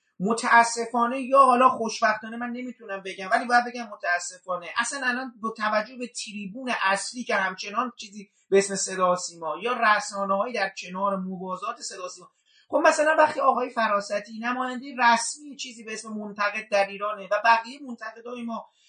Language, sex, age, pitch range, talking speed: Persian, male, 40-59, 200-245 Hz, 155 wpm